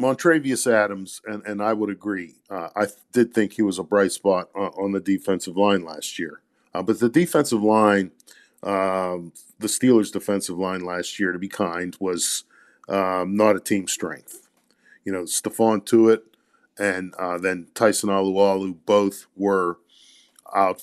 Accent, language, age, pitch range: American, English, 50-69, 95-110 Hz